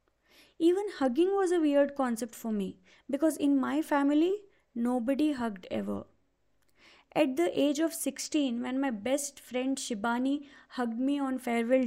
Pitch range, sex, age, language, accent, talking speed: 230-285 Hz, female, 20-39, English, Indian, 145 wpm